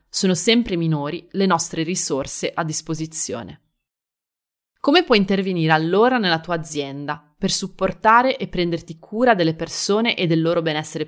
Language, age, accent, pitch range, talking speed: Italian, 30-49, native, 160-210 Hz, 140 wpm